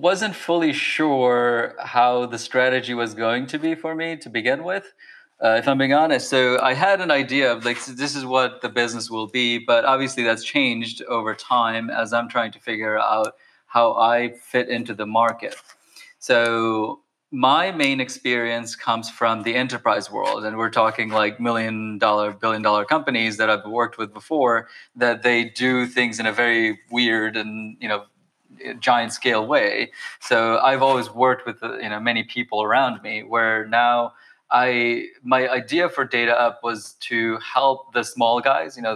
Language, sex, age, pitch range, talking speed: English, male, 30-49, 115-130 Hz, 175 wpm